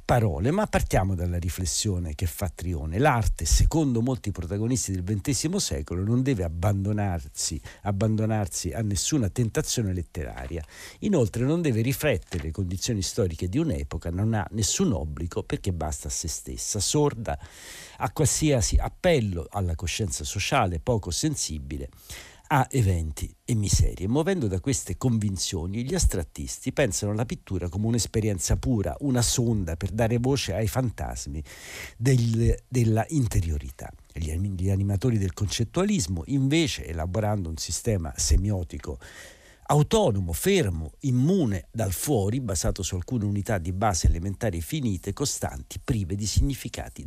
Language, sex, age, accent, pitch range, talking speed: Italian, male, 60-79, native, 90-120 Hz, 130 wpm